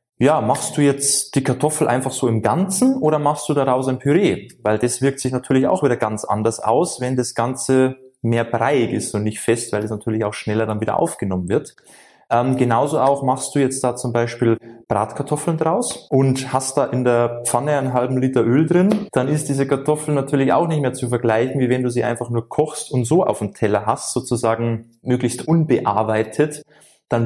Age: 20-39